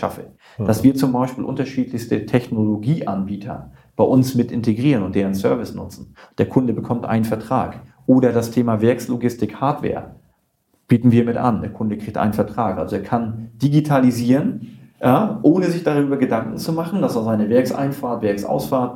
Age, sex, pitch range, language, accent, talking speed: 40-59, male, 110-135 Hz, German, German, 160 wpm